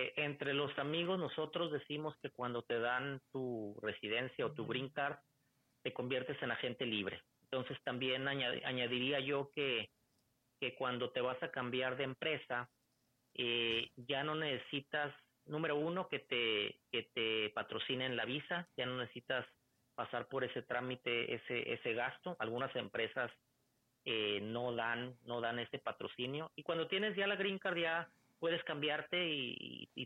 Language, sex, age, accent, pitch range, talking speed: Spanish, male, 30-49, Mexican, 125-150 Hz, 155 wpm